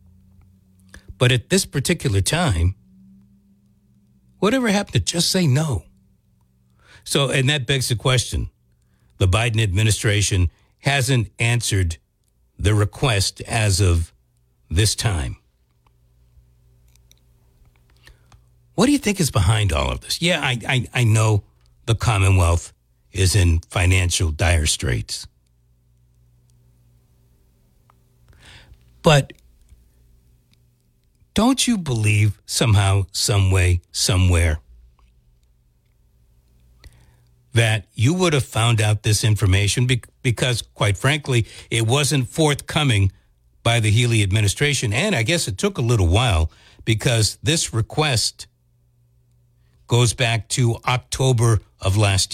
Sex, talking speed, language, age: male, 105 wpm, English, 60-79